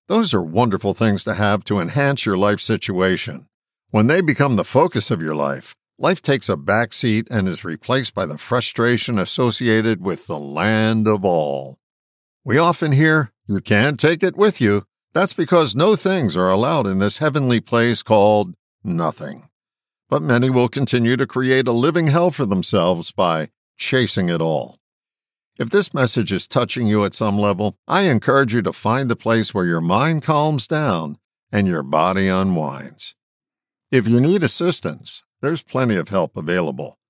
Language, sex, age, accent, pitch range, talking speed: English, male, 60-79, American, 100-145 Hz, 170 wpm